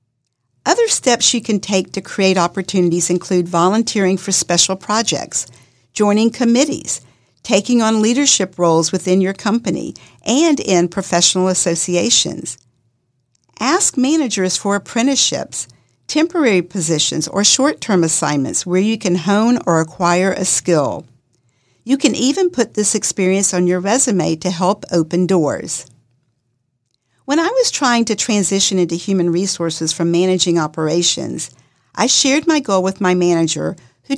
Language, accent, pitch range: English, American, 160-220 Hz